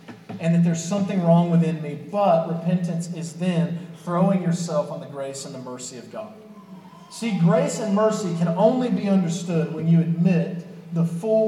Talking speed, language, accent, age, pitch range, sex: 180 wpm, English, American, 40-59, 165-200 Hz, male